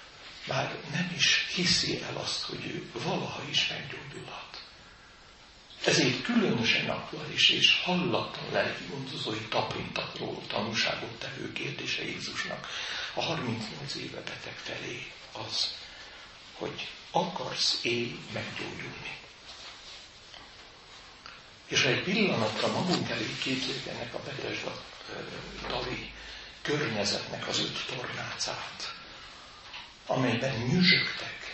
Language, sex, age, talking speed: Hungarian, male, 60-79, 95 wpm